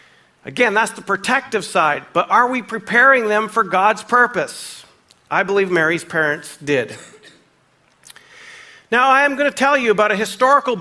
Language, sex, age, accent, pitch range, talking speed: English, male, 50-69, American, 170-225 Hz, 155 wpm